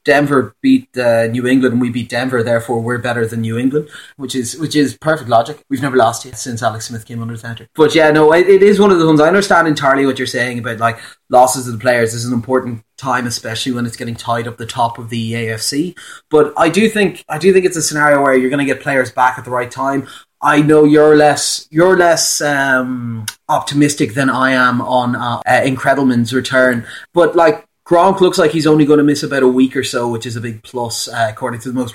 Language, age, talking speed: English, 30-49, 245 wpm